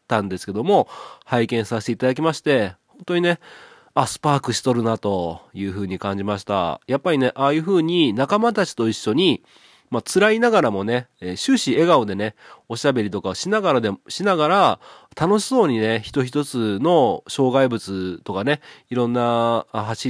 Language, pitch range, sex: Japanese, 100-145 Hz, male